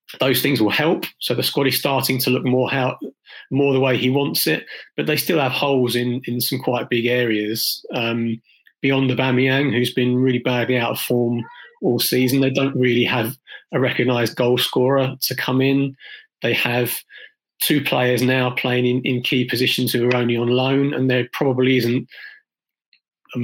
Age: 30-49